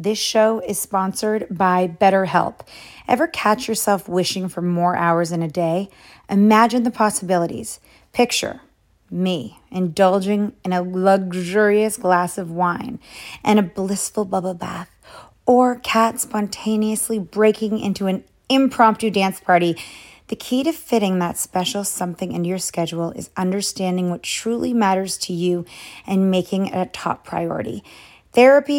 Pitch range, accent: 180-220 Hz, American